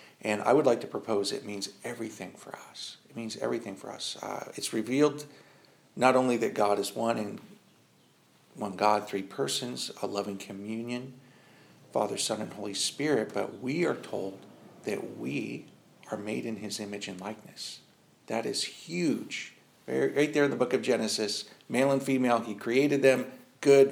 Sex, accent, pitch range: male, American, 105-125 Hz